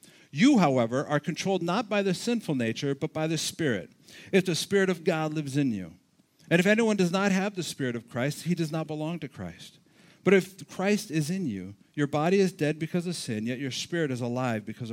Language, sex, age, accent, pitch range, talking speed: English, male, 50-69, American, 135-180 Hz, 225 wpm